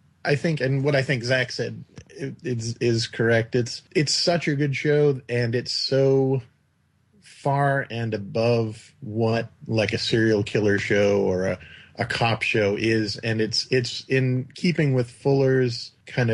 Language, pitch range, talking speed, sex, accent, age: English, 105-135 Hz, 160 wpm, male, American, 30-49